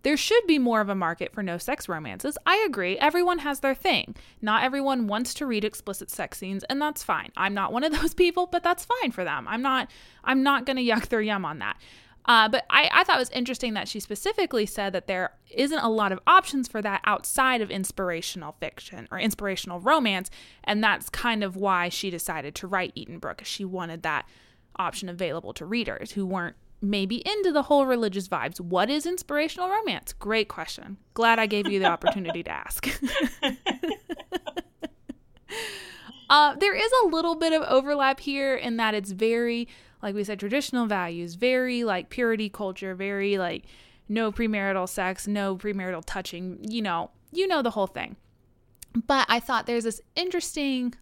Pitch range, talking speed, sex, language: 195-285 Hz, 190 wpm, female, English